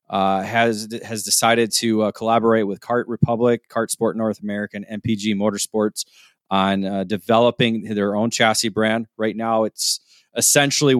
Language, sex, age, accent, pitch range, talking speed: English, male, 20-39, American, 105-120 Hz, 145 wpm